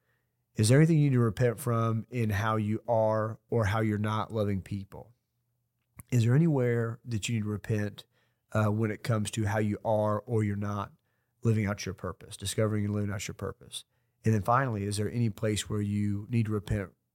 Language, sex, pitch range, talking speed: English, male, 105-120 Hz, 205 wpm